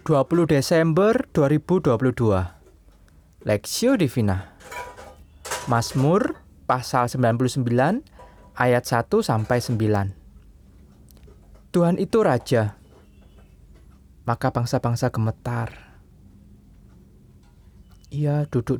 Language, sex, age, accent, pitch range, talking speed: Indonesian, male, 20-39, native, 90-140 Hz, 65 wpm